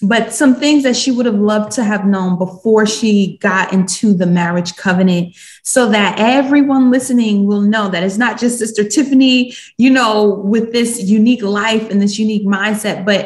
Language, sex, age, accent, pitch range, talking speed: English, female, 20-39, American, 200-250 Hz, 185 wpm